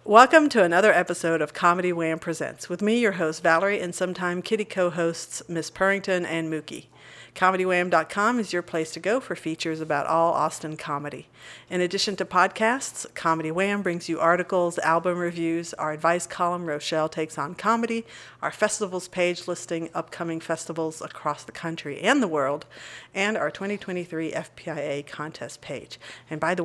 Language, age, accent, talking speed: English, 50-69, American, 160 wpm